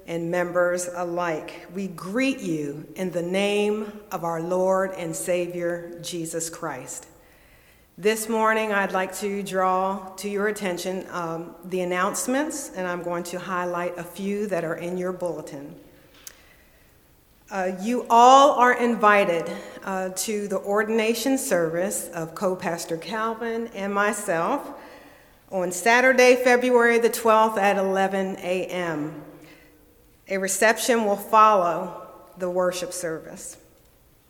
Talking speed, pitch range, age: 120 wpm, 180-235 Hz, 50-69